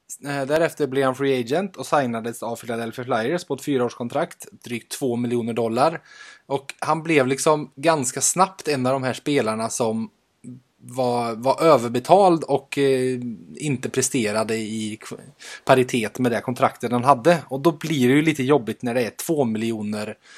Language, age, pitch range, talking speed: Swedish, 20-39, 115-140 Hz, 160 wpm